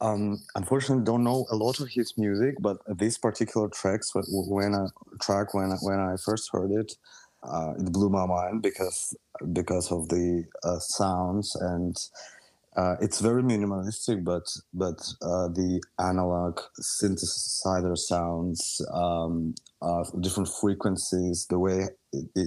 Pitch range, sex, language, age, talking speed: 85-100 Hz, male, Dutch, 30-49, 140 wpm